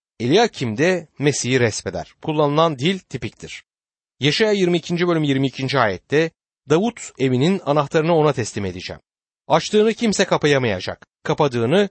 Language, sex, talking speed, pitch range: Turkish, male, 110 wpm, 125-180 Hz